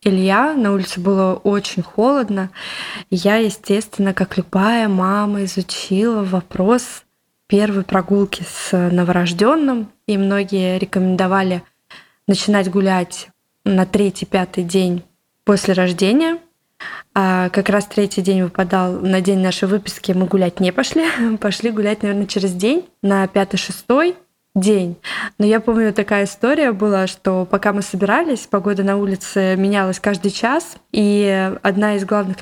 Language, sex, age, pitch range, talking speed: Russian, female, 20-39, 190-215 Hz, 125 wpm